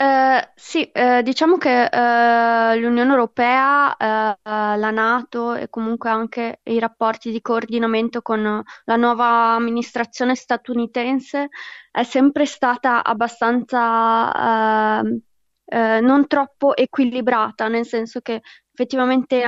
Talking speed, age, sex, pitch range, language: 110 wpm, 20-39, female, 225-250 Hz, Italian